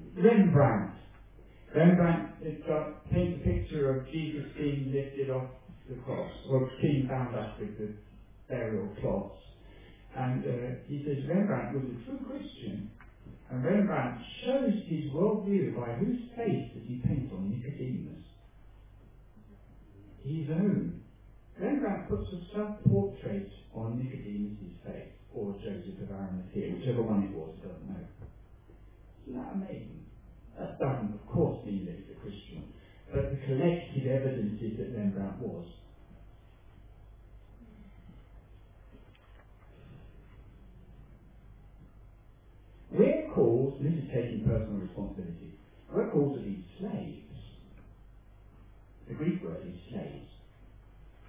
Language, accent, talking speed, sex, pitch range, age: English, British, 120 wpm, male, 100-150 Hz, 50-69